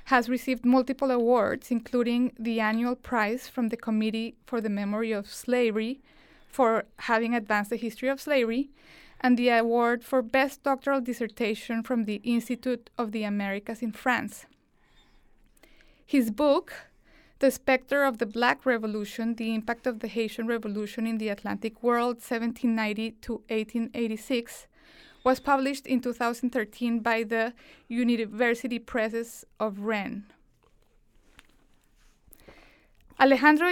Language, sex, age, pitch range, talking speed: English, female, 20-39, 225-260 Hz, 125 wpm